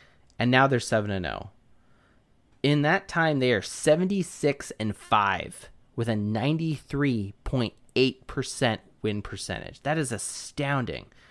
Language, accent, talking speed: English, American, 100 wpm